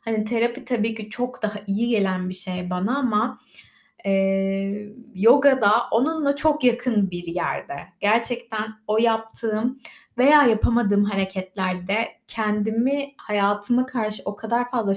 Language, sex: Turkish, female